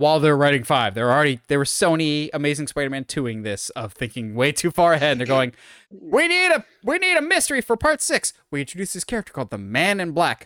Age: 20-39